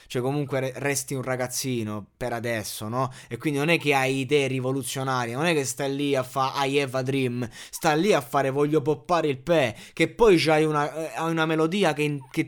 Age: 20-39